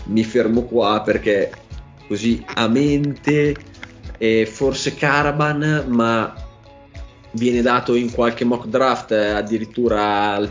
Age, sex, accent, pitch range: 20-39, male, native, 95-115 Hz